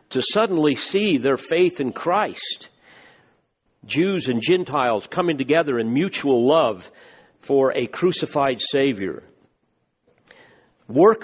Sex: male